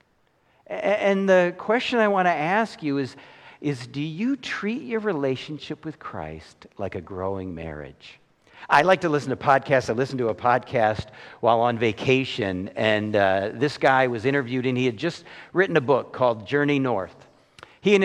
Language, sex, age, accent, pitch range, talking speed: English, male, 50-69, American, 120-170 Hz, 175 wpm